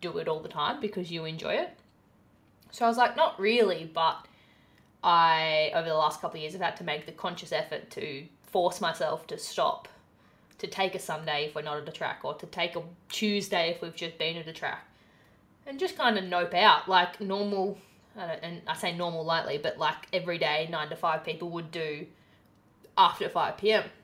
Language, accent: English, Australian